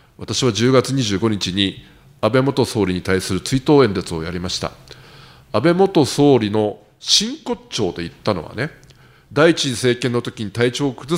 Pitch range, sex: 115-170 Hz, male